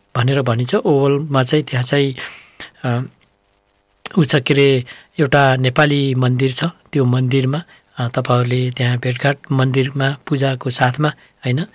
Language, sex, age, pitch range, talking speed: English, male, 60-79, 125-155 Hz, 125 wpm